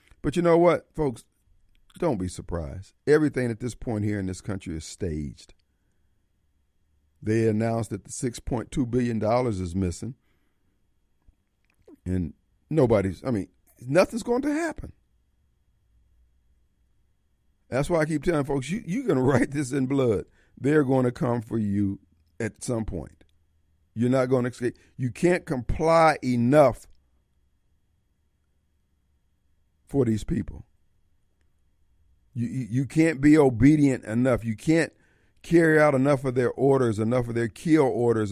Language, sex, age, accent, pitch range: Japanese, male, 50-69, American, 90-140 Hz